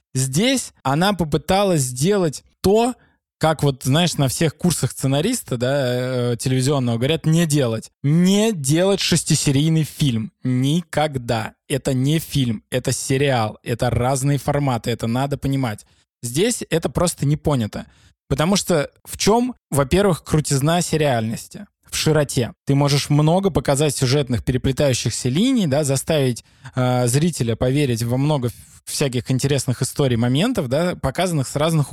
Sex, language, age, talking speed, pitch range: male, Russian, 20-39, 135 wpm, 130-170 Hz